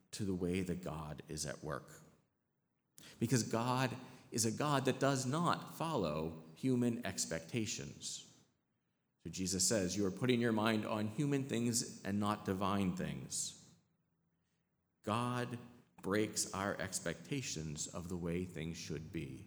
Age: 50-69